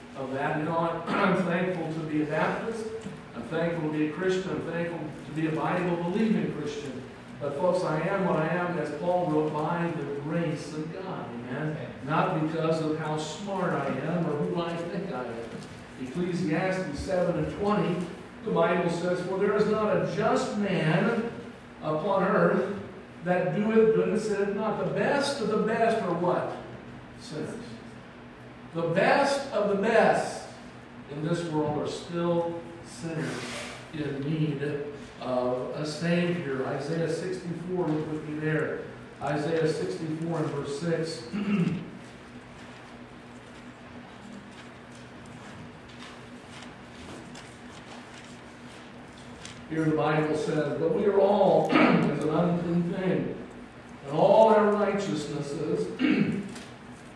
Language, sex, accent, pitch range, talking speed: English, male, American, 145-185 Hz, 130 wpm